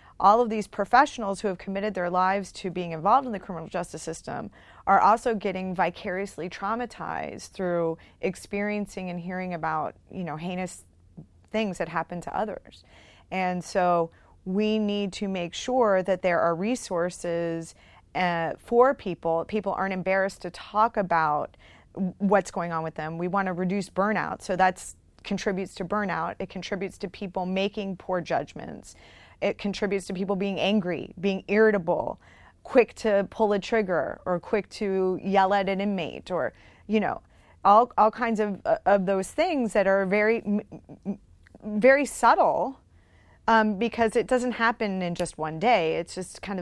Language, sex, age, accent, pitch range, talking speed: English, female, 30-49, American, 175-210 Hz, 160 wpm